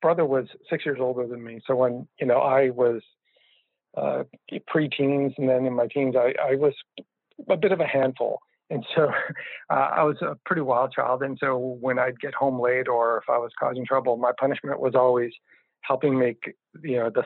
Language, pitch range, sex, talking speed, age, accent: English, 120-135 Hz, male, 205 wpm, 50-69, American